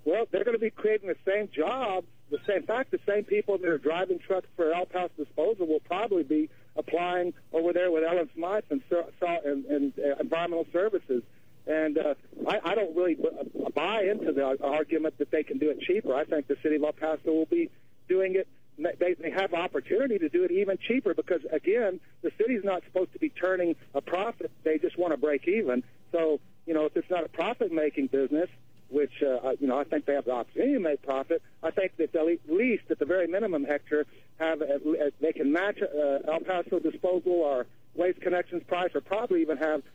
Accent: American